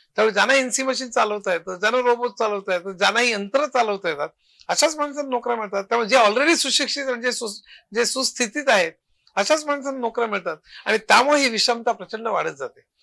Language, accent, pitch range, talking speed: Marathi, native, 200-260 Hz, 155 wpm